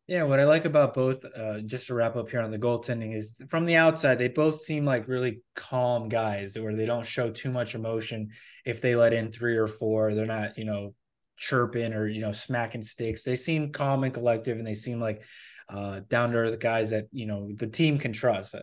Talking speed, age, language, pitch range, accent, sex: 230 wpm, 20-39, English, 110-130 Hz, American, male